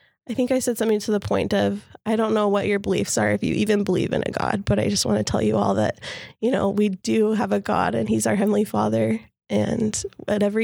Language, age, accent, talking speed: English, 20-39, American, 260 wpm